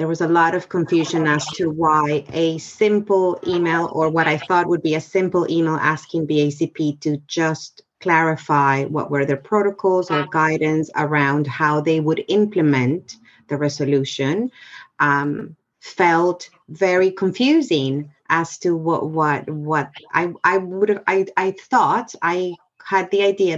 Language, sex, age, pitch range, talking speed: English, female, 30-49, 155-185 Hz, 150 wpm